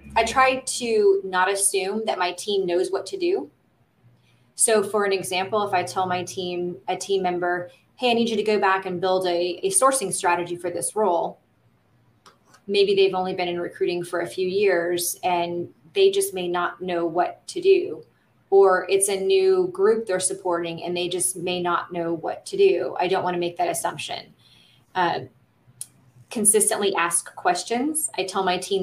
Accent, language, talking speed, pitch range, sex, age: American, English, 185 wpm, 175-210 Hz, female, 20-39